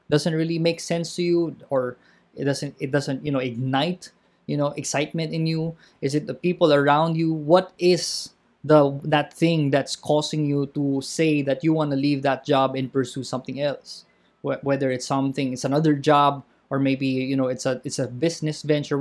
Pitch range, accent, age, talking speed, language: 135-165 Hz, Filipino, 20-39, 195 wpm, English